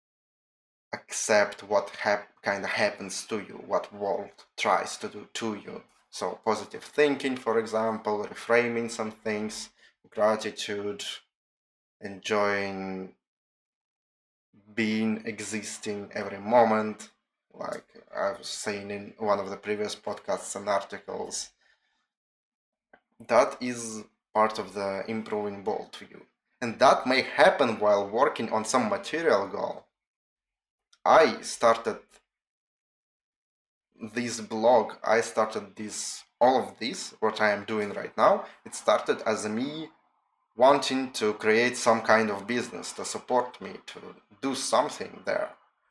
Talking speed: 125 wpm